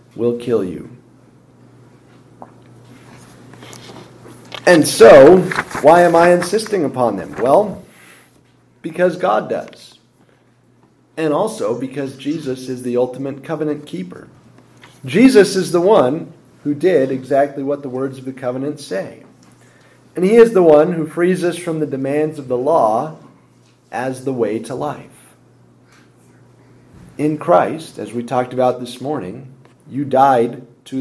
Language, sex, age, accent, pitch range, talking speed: English, male, 40-59, American, 125-155 Hz, 130 wpm